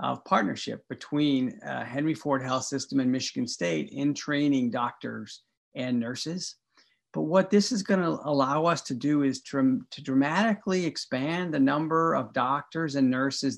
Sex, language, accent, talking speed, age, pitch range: male, English, American, 155 wpm, 50-69, 135-175 Hz